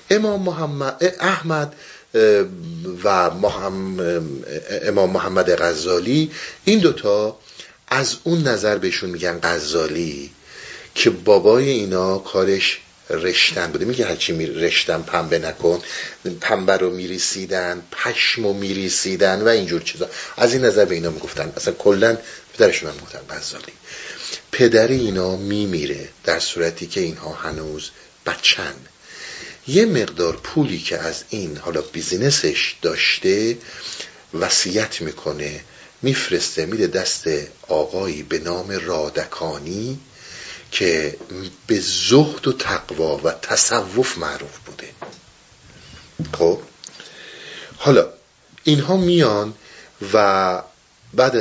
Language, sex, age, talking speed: Persian, male, 50-69, 105 wpm